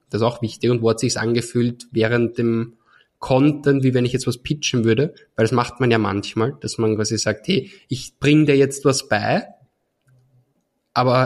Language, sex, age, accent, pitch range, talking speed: German, male, 20-39, German, 110-130 Hz, 195 wpm